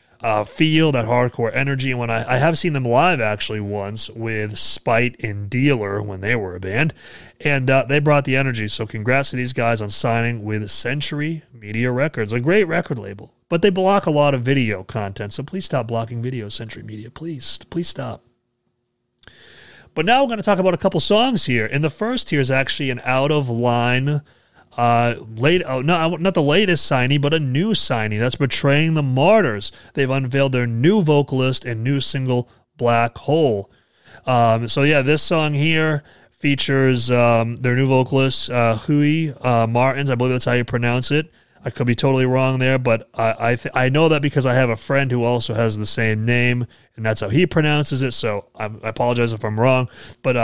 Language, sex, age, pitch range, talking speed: English, male, 30-49, 115-145 Hz, 200 wpm